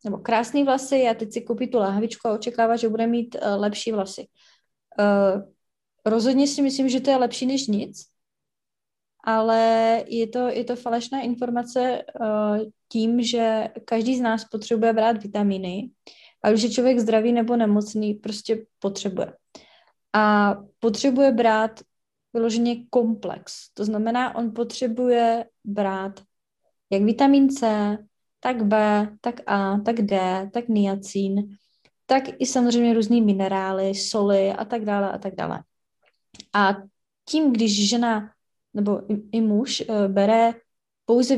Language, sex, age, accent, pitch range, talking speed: Czech, female, 20-39, native, 205-240 Hz, 140 wpm